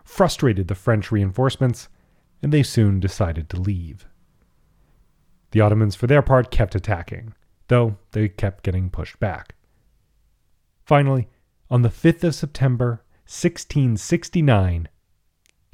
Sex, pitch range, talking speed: male, 95-125 Hz, 115 wpm